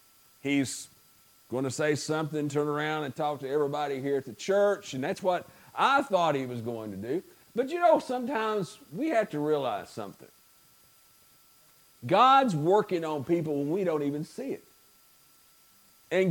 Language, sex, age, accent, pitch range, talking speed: English, male, 50-69, American, 145-200 Hz, 165 wpm